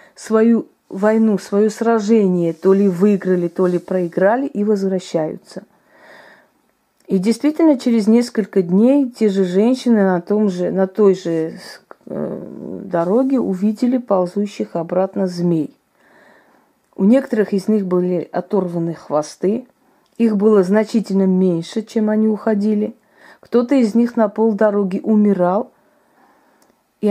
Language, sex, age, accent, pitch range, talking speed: Russian, female, 30-49, native, 190-225 Hz, 115 wpm